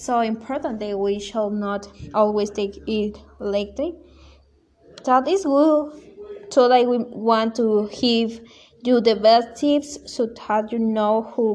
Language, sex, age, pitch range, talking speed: English, female, 20-39, 205-240 Hz, 150 wpm